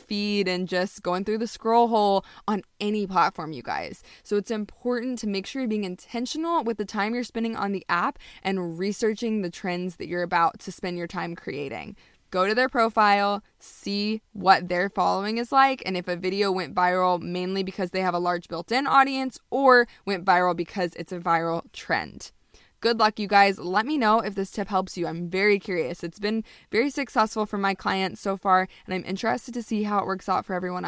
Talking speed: 210 wpm